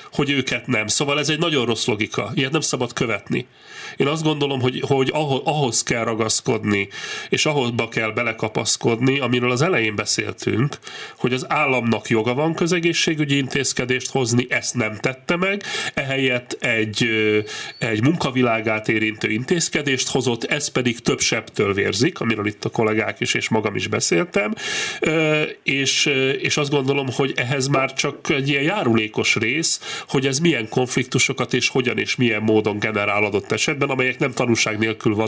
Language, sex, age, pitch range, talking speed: Hungarian, male, 30-49, 115-145 Hz, 155 wpm